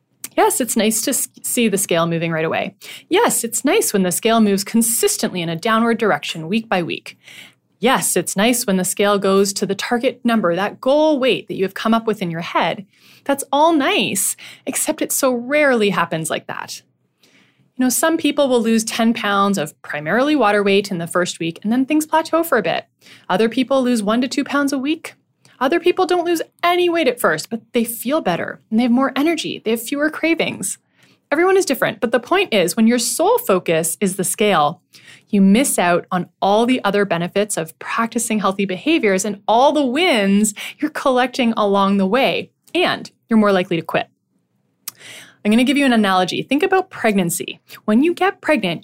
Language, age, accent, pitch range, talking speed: English, 20-39, American, 200-285 Hz, 205 wpm